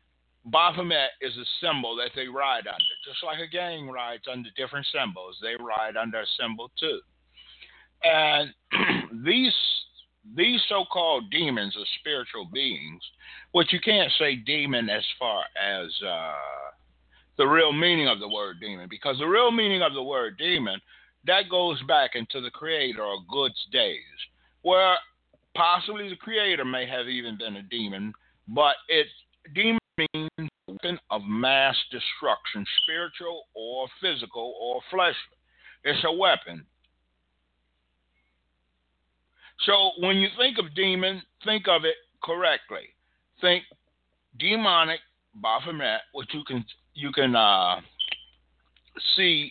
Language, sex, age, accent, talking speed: English, male, 50-69, American, 130 wpm